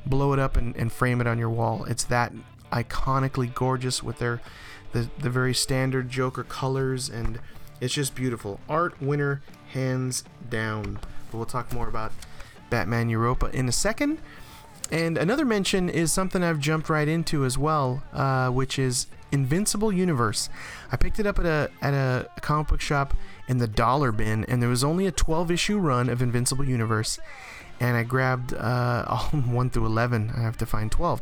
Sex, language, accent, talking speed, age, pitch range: male, English, American, 180 wpm, 30-49, 120-150 Hz